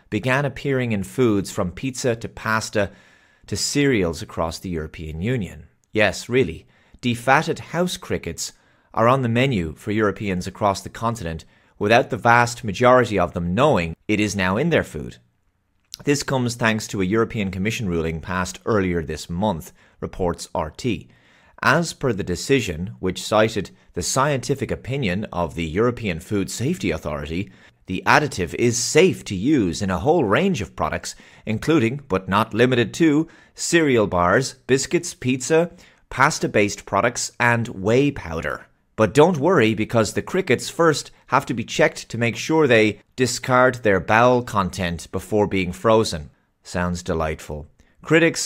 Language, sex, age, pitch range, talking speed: English, male, 30-49, 90-125 Hz, 150 wpm